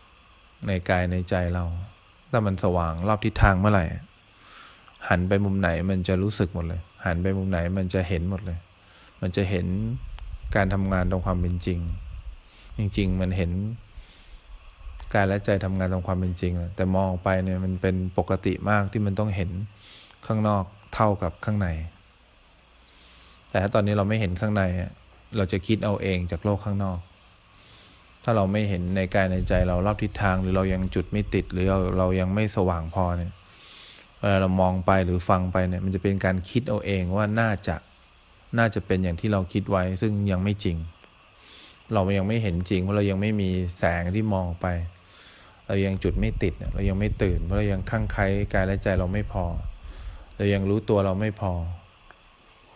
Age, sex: 20-39, male